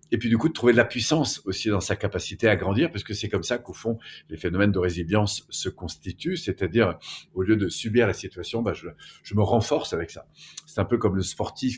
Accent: French